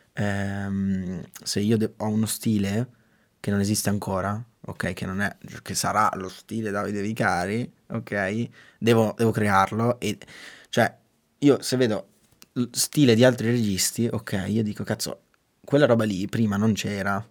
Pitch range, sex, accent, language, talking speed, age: 100-115 Hz, male, native, Italian, 145 wpm, 20-39